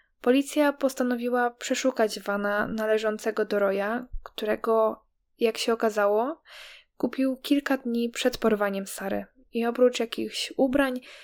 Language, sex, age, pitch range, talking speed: Polish, female, 10-29, 205-240 Hz, 110 wpm